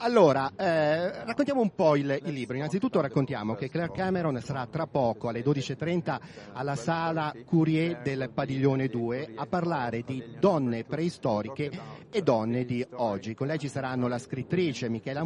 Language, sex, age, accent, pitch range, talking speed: Italian, male, 40-59, native, 125-165 Hz, 155 wpm